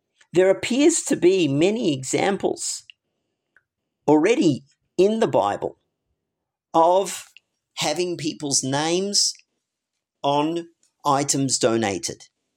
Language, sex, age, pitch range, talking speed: English, male, 50-69, 155-210 Hz, 80 wpm